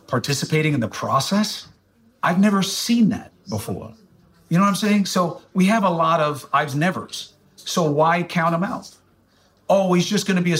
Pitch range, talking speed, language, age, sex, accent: 125-180 Hz, 195 wpm, English, 50-69, male, American